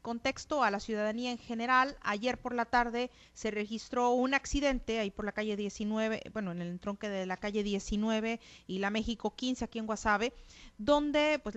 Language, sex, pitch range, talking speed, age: Spanish, female, 205-245 Hz, 185 wpm, 30-49